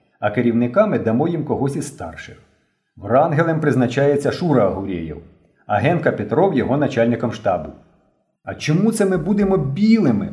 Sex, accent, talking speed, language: male, native, 135 wpm, Ukrainian